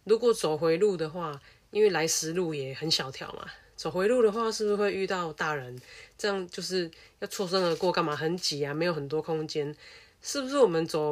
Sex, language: female, Chinese